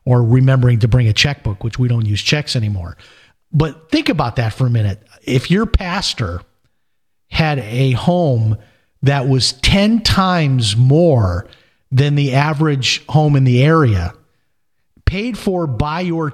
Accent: American